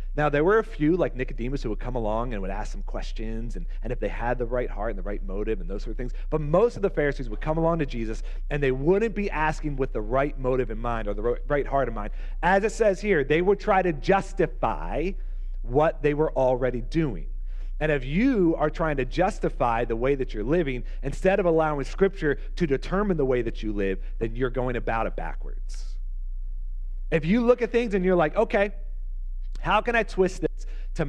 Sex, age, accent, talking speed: male, 40-59, American, 230 wpm